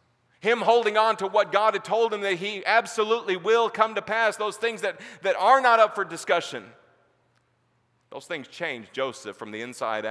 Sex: male